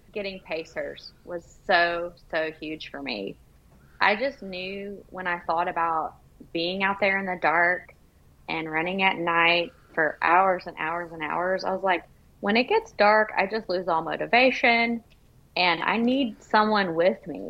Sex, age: female, 20-39